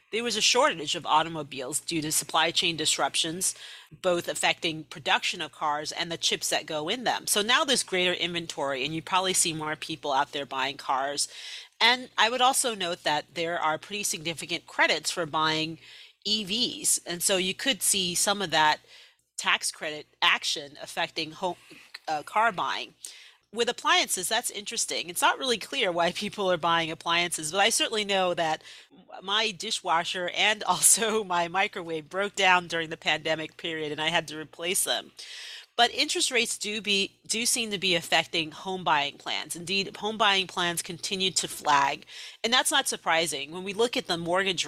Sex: female